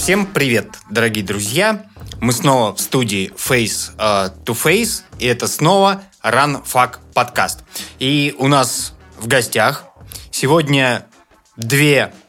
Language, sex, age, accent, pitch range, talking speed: Russian, male, 20-39, native, 115-135 Hz, 110 wpm